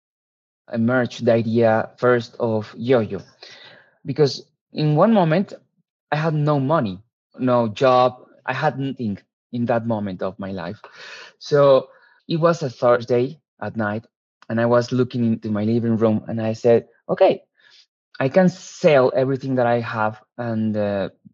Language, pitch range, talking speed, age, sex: English, 115-140 Hz, 145 wpm, 20-39, male